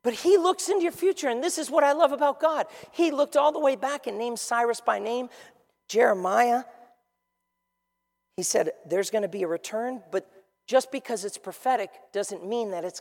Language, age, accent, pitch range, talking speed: English, 40-59, American, 175-245 Hz, 200 wpm